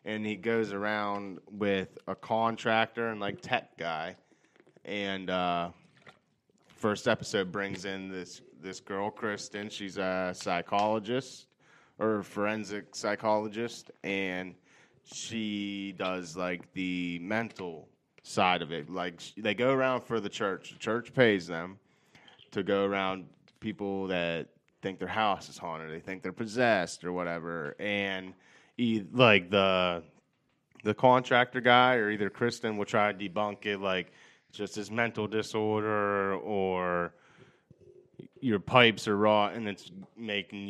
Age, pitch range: 20-39, 95-110 Hz